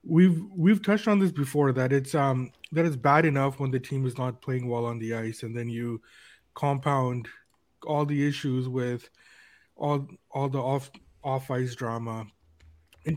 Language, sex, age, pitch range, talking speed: English, male, 20-39, 125-145 Hz, 180 wpm